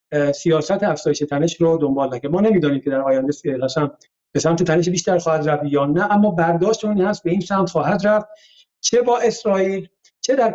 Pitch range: 145-185 Hz